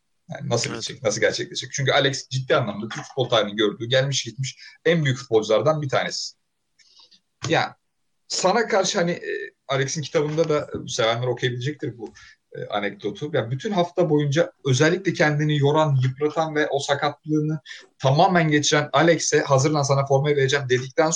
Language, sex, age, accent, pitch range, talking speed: Turkish, male, 40-59, native, 125-160 Hz, 145 wpm